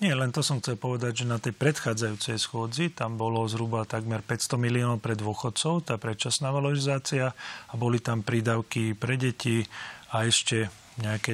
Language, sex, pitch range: Slovak, male, 110-125 Hz